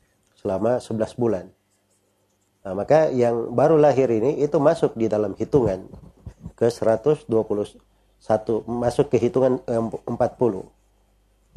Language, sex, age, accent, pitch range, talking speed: Indonesian, male, 40-59, native, 100-130 Hz, 105 wpm